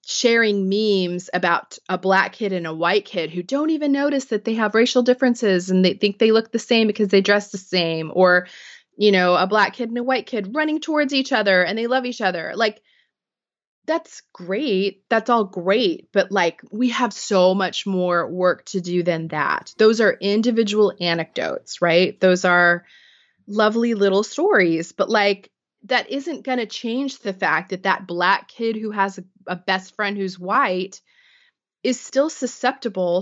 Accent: American